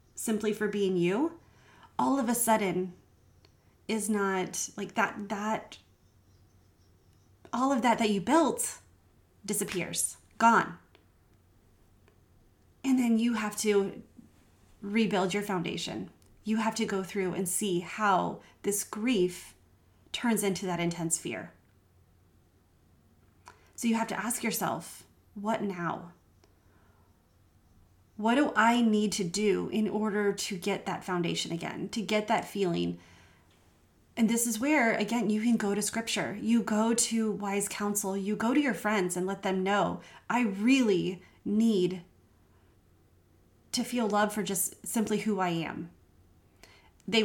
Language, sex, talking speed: English, female, 135 wpm